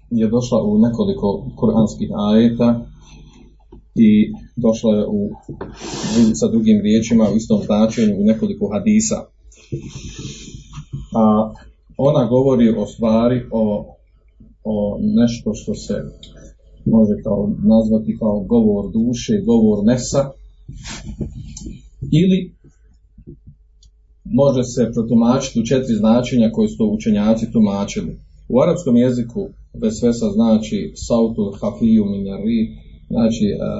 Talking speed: 105 wpm